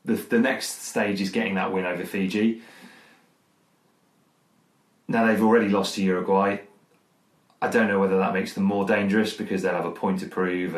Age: 30-49